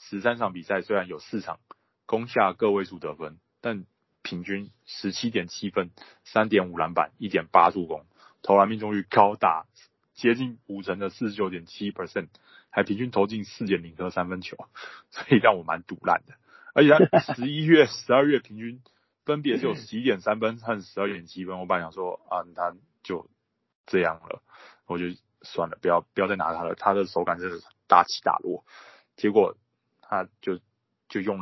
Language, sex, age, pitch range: Chinese, male, 20-39, 95-120 Hz